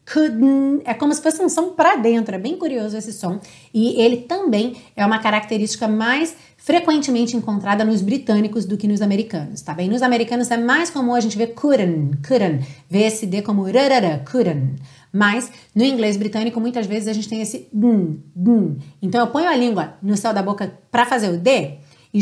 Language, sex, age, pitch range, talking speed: Portuguese, female, 30-49, 190-275 Hz, 190 wpm